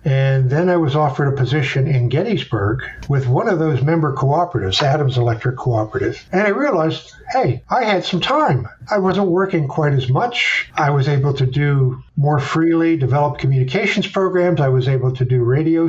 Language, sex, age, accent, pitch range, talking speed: English, male, 50-69, American, 130-165 Hz, 180 wpm